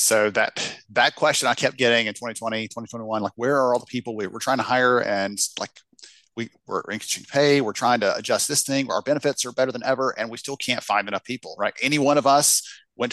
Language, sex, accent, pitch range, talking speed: English, male, American, 110-125 Hz, 240 wpm